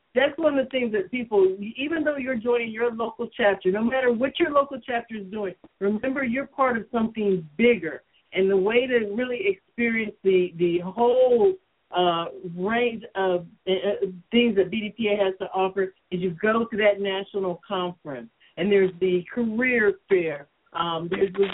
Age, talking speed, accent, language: 50-69, 175 wpm, American, English